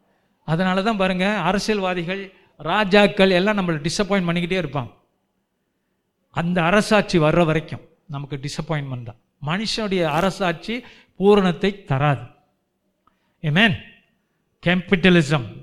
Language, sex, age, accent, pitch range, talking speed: Tamil, male, 50-69, native, 160-215 Hz, 85 wpm